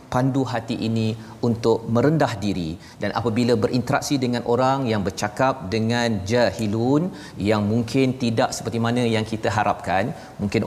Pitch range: 110-130 Hz